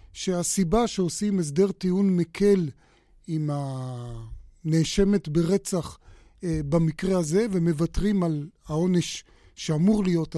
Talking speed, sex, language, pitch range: 95 wpm, male, Hebrew, 160-190 Hz